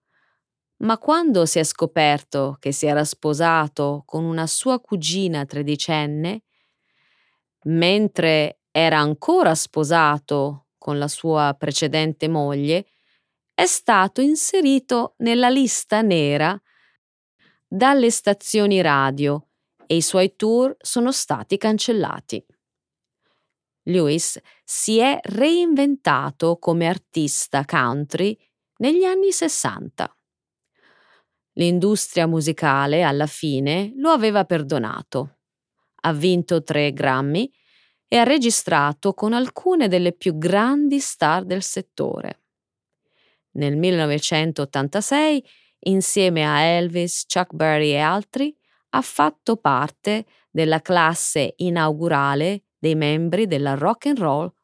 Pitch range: 150-215 Hz